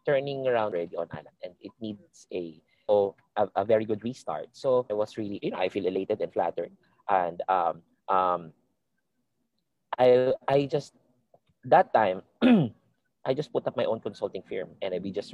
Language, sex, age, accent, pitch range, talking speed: English, male, 20-39, Filipino, 95-125 Hz, 175 wpm